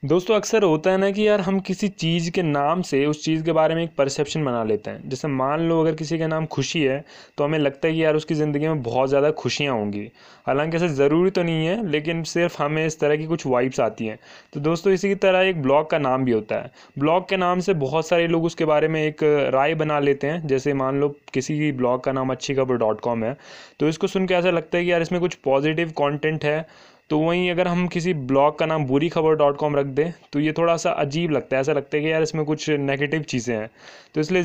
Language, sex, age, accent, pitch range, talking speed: Hindi, male, 20-39, native, 140-170 Hz, 245 wpm